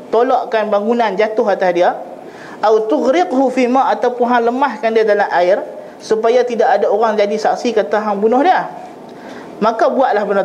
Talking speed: 155 wpm